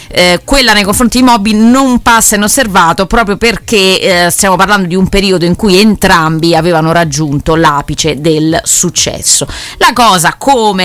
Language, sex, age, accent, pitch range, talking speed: Italian, female, 30-49, native, 155-200 Hz, 155 wpm